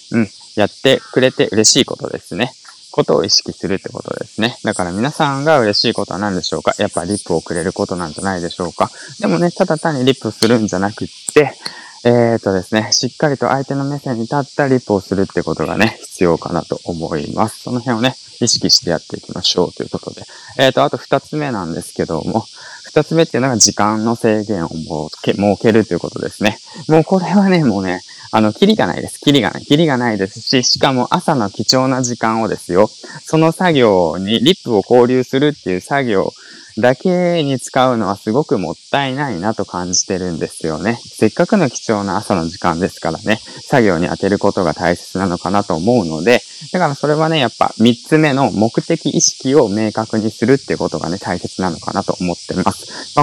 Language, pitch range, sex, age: Japanese, 100-145 Hz, male, 20-39